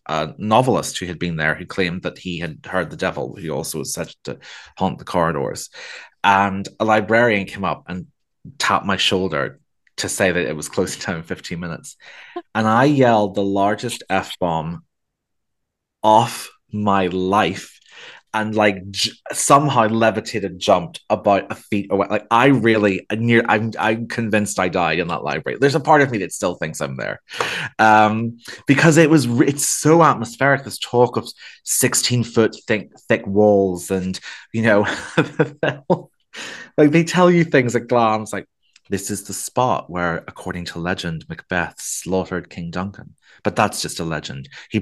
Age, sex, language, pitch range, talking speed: 30-49, male, English, 95-120 Hz, 175 wpm